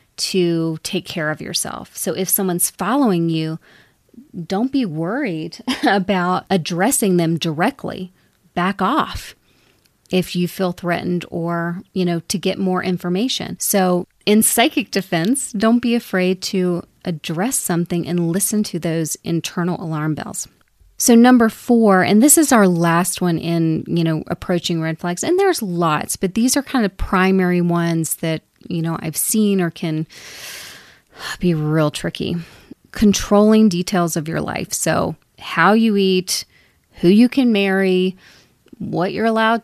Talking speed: 150 wpm